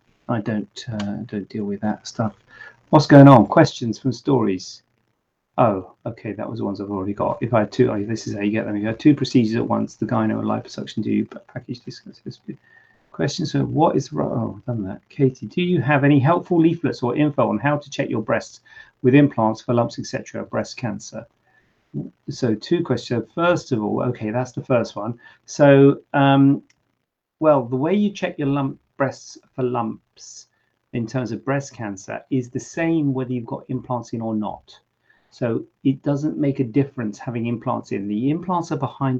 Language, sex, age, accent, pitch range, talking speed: English, male, 40-59, British, 115-140 Hz, 200 wpm